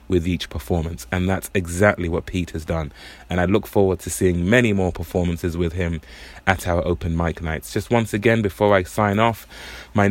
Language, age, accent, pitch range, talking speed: English, 20-39, British, 90-110 Hz, 200 wpm